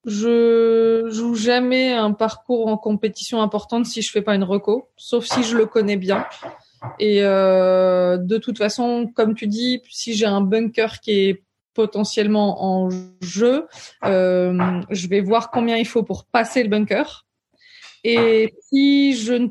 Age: 20-39